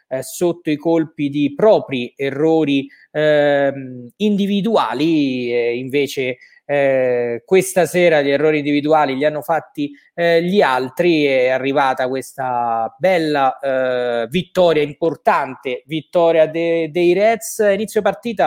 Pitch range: 140-175 Hz